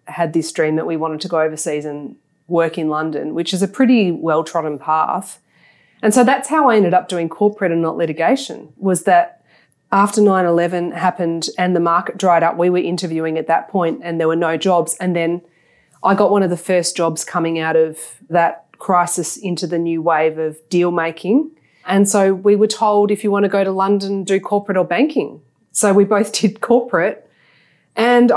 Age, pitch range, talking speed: 20-39, 165-195 Hz, 205 wpm